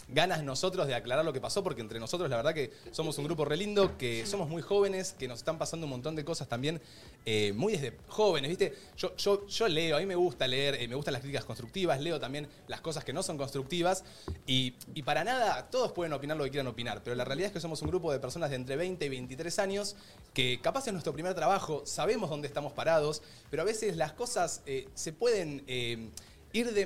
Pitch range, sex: 125-185 Hz, male